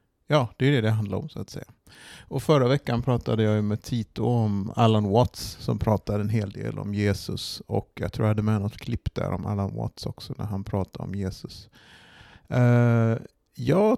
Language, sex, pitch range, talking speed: Swedish, male, 105-125 Hz, 200 wpm